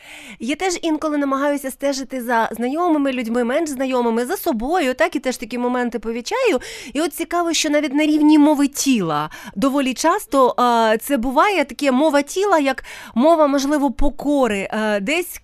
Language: Ukrainian